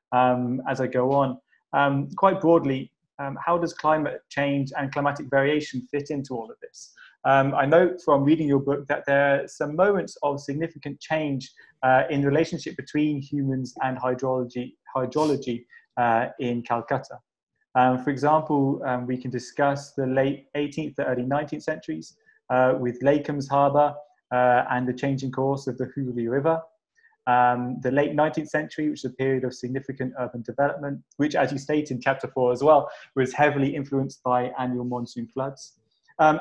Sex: male